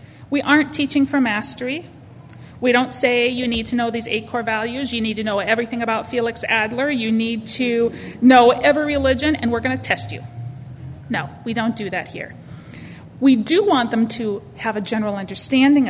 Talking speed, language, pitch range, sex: 195 wpm, English, 220-280 Hz, female